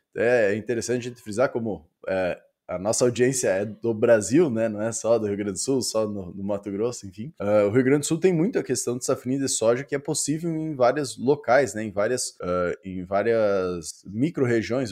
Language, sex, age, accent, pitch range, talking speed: Portuguese, male, 20-39, Brazilian, 110-140 Hz, 215 wpm